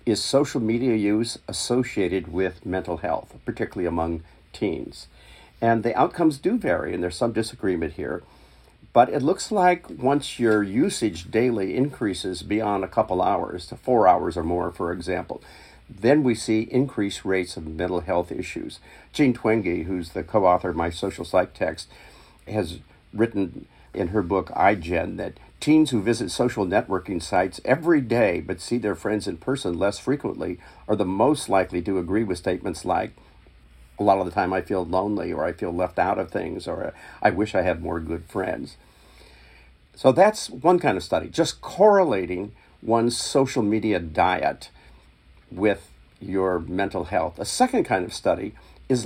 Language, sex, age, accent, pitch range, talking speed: English, male, 50-69, American, 85-120 Hz, 170 wpm